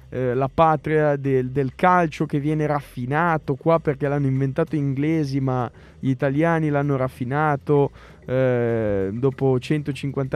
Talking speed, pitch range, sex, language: 135 wpm, 130-155 Hz, male, Italian